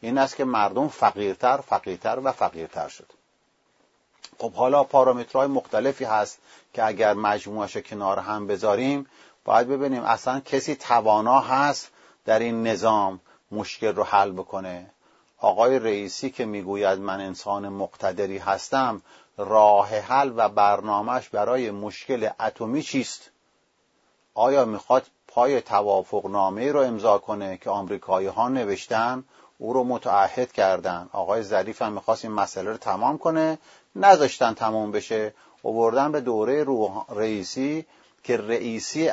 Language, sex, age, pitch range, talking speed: English, male, 40-59, 100-130 Hz, 130 wpm